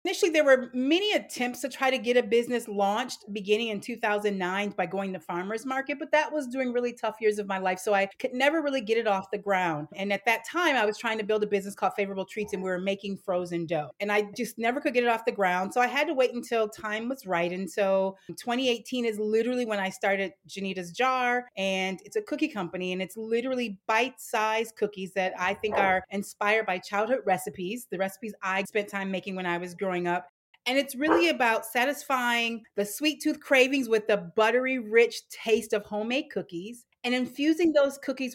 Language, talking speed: English, 220 wpm